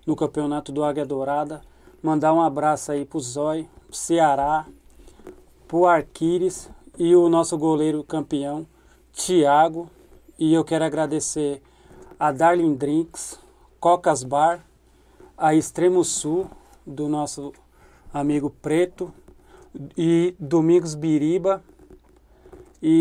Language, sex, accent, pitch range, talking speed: Portuguese, male, Brazilian, 150-180 Hz, 105 wpm